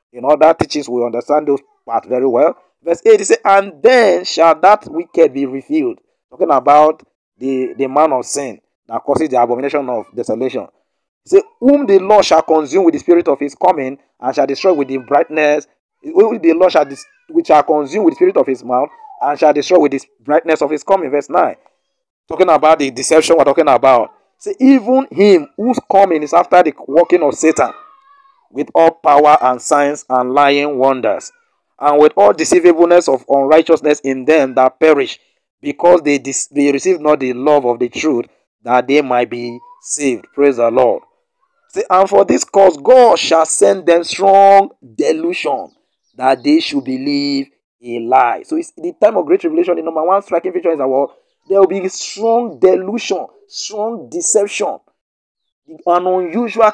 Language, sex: English, male